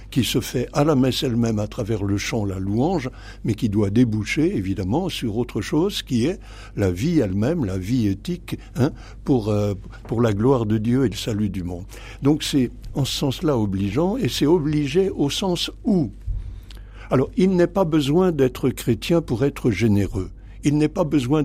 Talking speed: 190 wpm